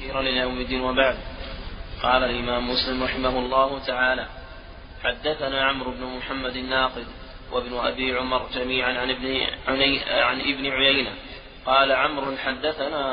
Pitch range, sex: 130-140 Hz, male